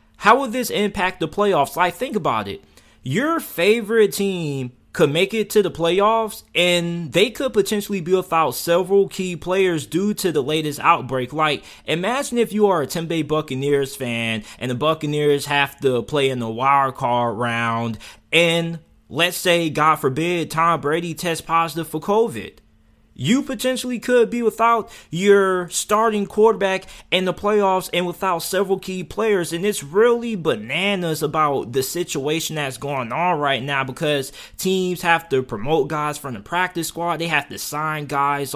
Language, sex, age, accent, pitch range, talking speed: English, male, 20-39, American, 140-180 Hz, 165 wpm